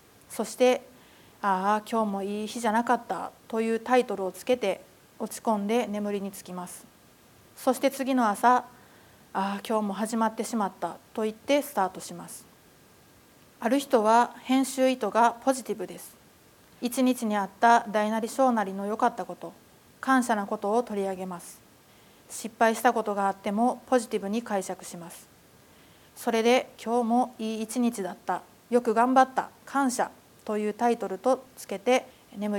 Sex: female